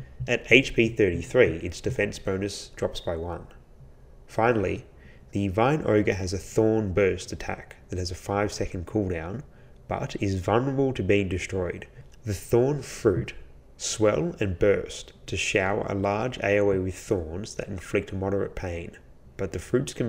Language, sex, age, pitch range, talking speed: English, male, 30-49, 90-110 Hz, 150 wpm